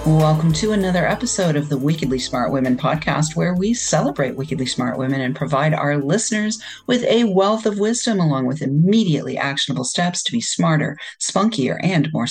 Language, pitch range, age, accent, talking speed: English, 150-225 Hz, 40-59, American, 175 wpm